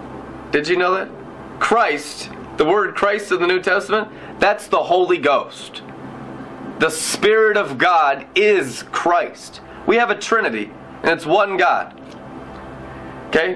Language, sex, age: English, male, 30-49